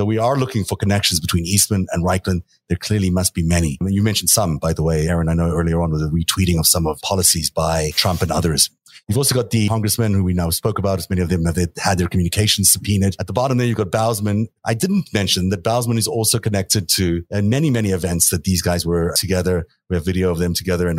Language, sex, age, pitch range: English, male, 30-49, 85-105 Hz